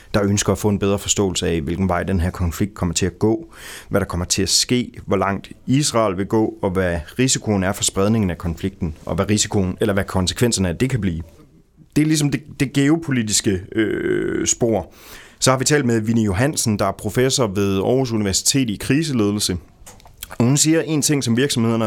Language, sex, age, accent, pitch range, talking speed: Danish, male, 30-49, native, 95-120 Hz, 210 wpm